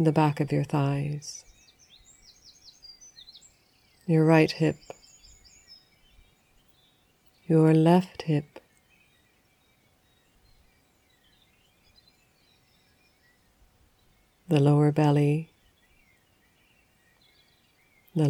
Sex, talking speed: female, 50 wpm